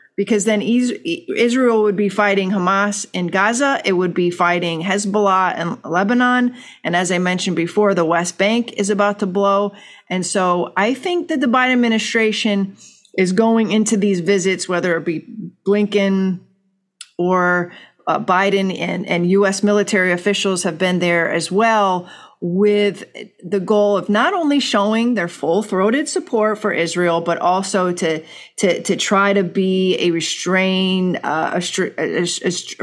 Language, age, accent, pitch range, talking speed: English, 40-59, American, 180-210 Hz, 150 wpm